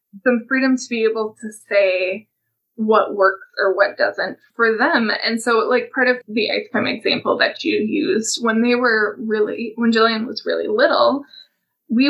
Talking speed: 180 wpm